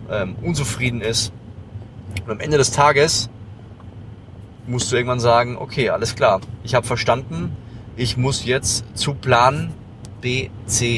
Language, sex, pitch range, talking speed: German, male, 110-130 Hz, 130 wpm